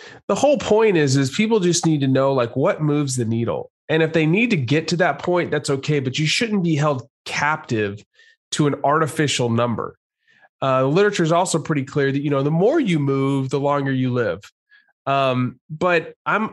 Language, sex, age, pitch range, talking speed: English, male, 30-49, 130-170 Hz, 205 wpm